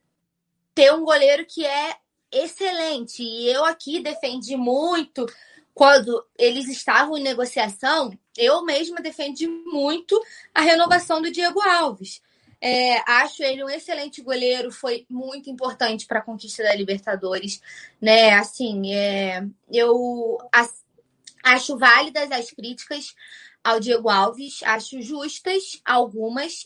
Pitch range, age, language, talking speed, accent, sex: 225-275 Hz, 20-39, Portuguese, 115 wpm, Brazilian, female